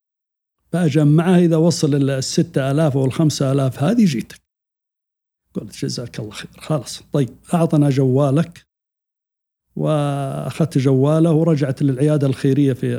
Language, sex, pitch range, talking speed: Arabic, male, 135-165 Hz, 110 wpm